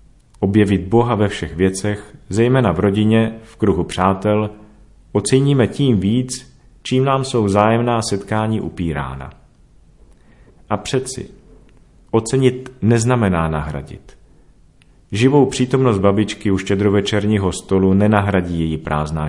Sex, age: male, 40-59